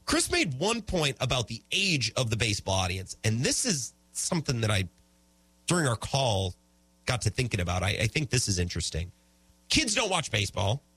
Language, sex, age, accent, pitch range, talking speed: English, male, 30-49, American, 90-135 Hz, 185 wpm